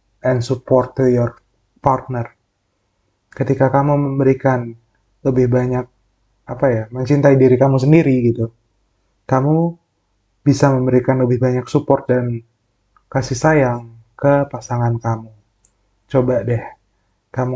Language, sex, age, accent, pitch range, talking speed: Indonesian, male, 20-39, native, 115-140 Hz, 110 wpm